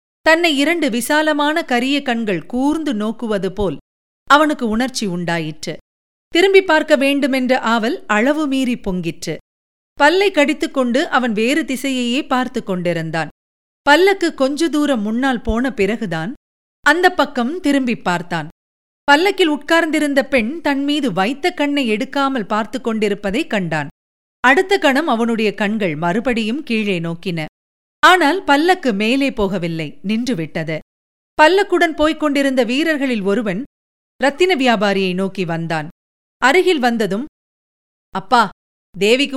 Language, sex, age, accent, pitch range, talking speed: Tamil, female, 50-69, native, 200-285 Hz, 105 wpm